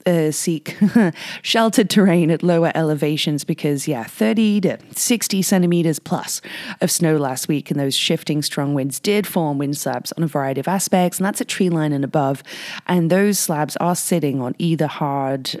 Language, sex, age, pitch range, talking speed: English, female, 30-49, 145-180 Hz, 180 wpm